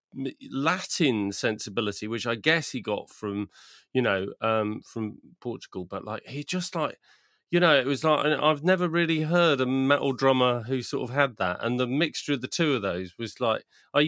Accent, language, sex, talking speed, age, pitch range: British, English, male, 195 wpm, 40-59, 105-140 Hz